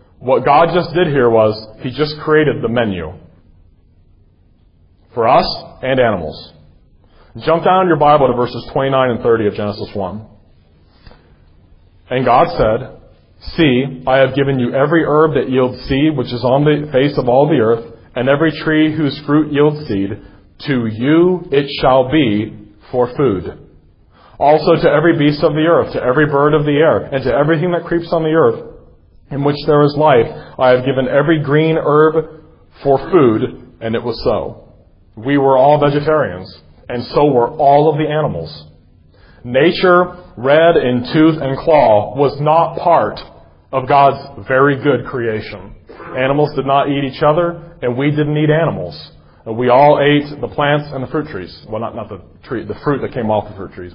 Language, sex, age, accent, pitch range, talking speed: English, male, 30-49, American, 105-150 Hz, 175 wpm